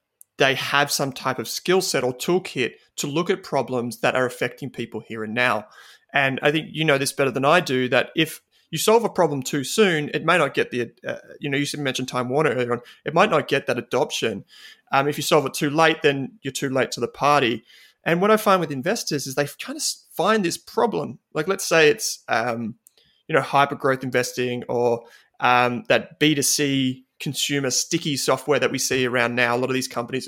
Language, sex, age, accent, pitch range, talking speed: English, male, 30-49, Australian, 125-150 Hz, 220 wpm